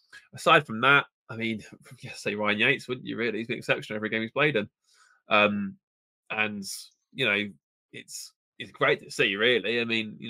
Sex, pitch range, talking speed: male, 105-120 Hz, 190 wpm